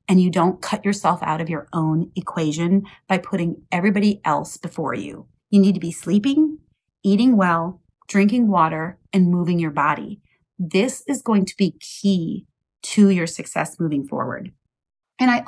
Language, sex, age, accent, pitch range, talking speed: English, female, 30-49, American, 165-205 Hz, 165 wpm